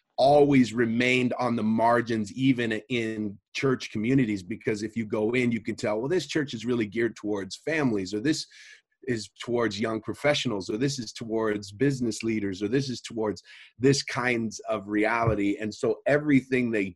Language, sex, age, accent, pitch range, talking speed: English, male, 30-49, American, 105-125 Hz, 175 wpm